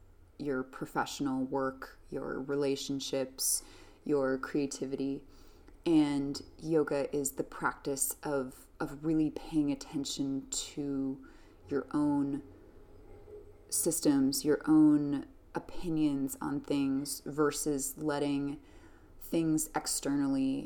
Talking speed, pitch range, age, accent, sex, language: 85 wpm, 135-155 Hz, 20-39, American, female, English